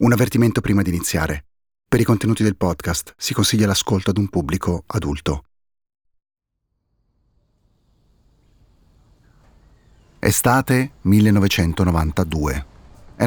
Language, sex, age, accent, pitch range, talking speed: Italian, male, 40-59, native, 85-105 Hz, 85 wpm